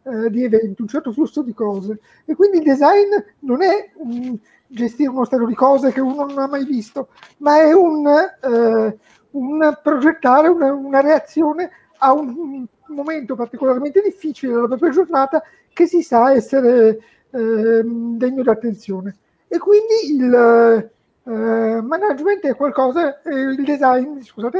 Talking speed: 145 wpm